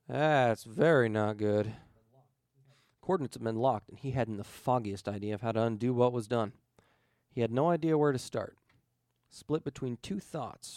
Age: 40-59